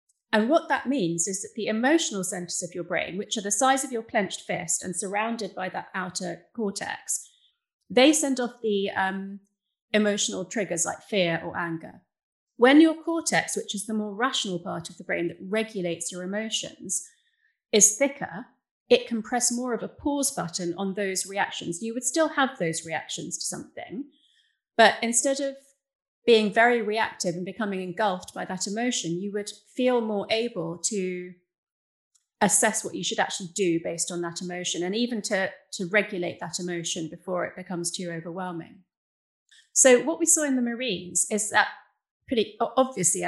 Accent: British